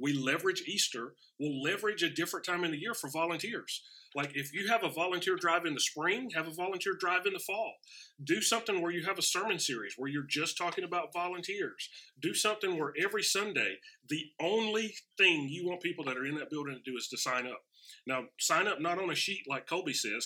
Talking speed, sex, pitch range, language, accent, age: 225 wpm, male, 130-180 Hz, English, American, 30-49